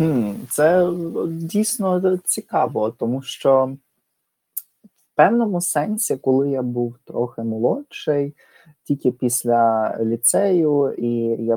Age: 20-39